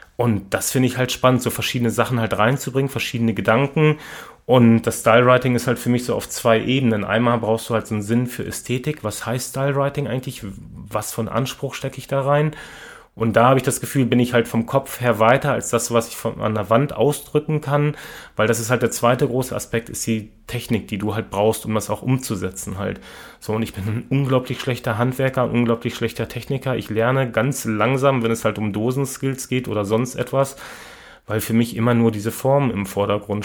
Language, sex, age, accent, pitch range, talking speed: German, male, 30-49, German, 110-130 Hz, 215 wpm